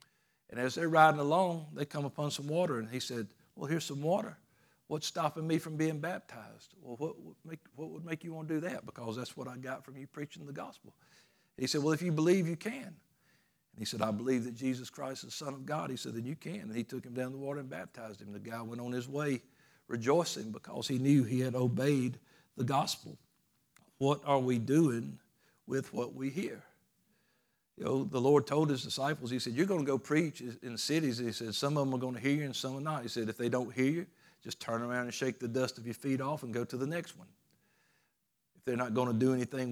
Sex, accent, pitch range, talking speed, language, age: male, American, 125-155 Hz, 250 wpm, English, 60-79